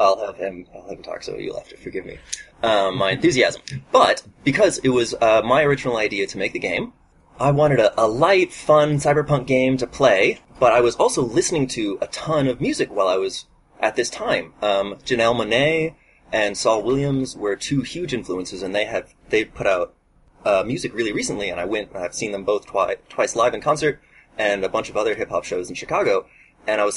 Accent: American